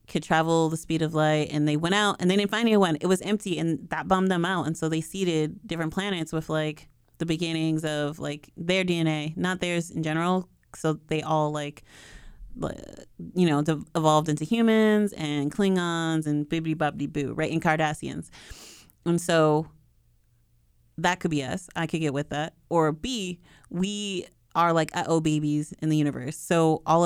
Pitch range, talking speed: 150-175 Hz, 180 wpm